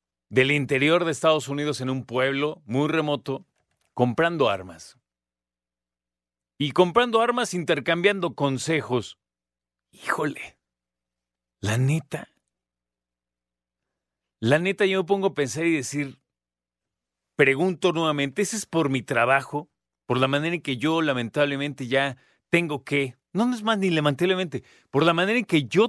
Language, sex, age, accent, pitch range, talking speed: Spanish, male, 40-59, Mexican, 110-155 Hz, 130 wpm